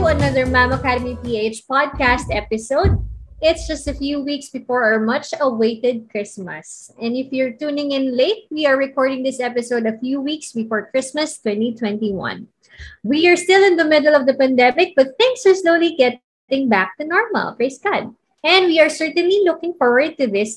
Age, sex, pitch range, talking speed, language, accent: 20-39, female, 245-315 Hz, 170 wpm, English, Filipino